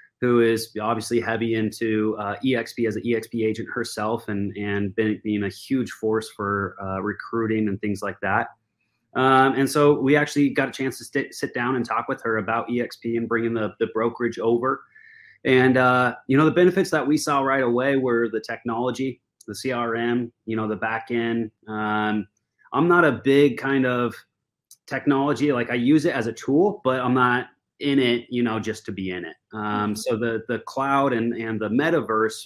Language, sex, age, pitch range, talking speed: English, male, 30-49, 110-130 Hz, 195 wpm